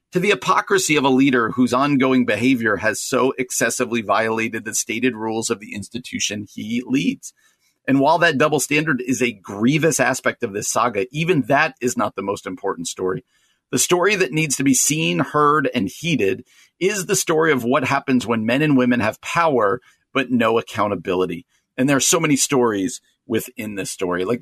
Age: 40-59